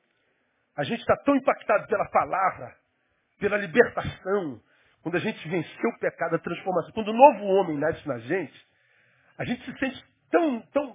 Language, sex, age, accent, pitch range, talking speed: Portuguese, male, 50-69, Brazilian, 190-285 Hz, 170 wpm